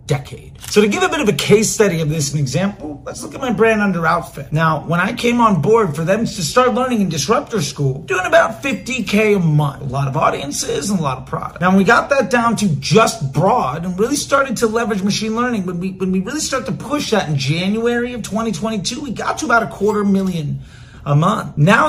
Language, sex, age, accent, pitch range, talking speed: English, male, 30-49, American, 165-225 Hz, 245 wpm